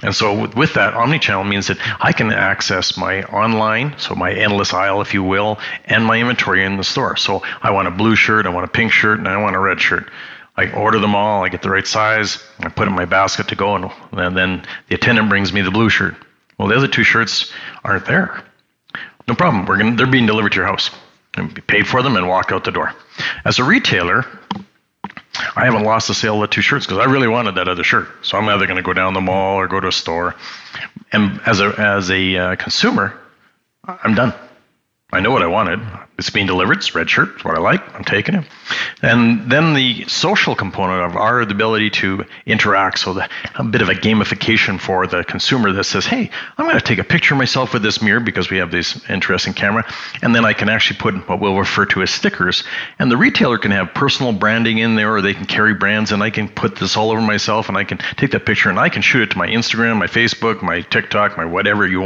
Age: 40-59